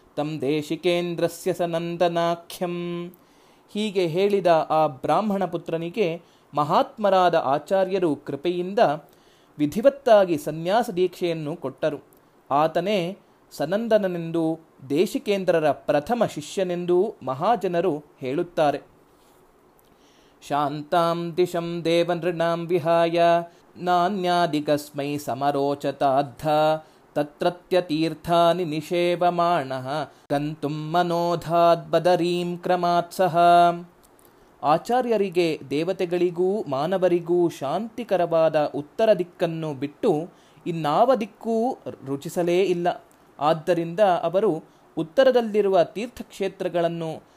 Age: 30-49